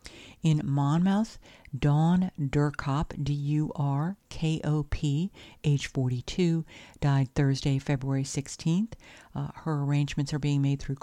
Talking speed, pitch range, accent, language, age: 100 wpm, 140-160 Hz, American, English, 50-69